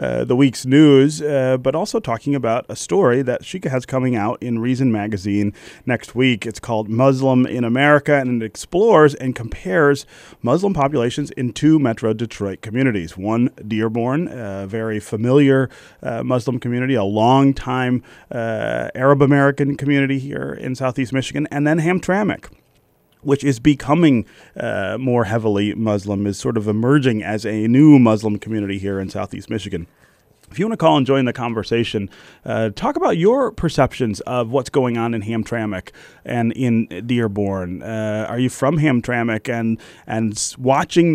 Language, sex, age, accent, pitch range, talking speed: English, male, 30-49, American, 110-135 Hz, 160 wpm